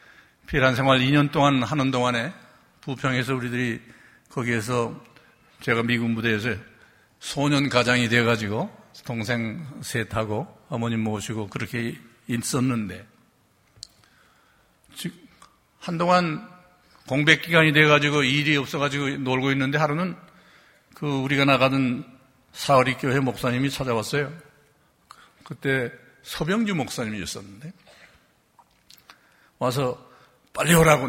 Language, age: Korean, 60-79